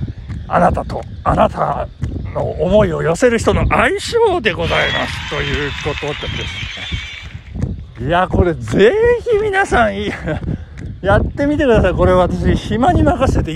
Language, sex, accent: Japanese, male, native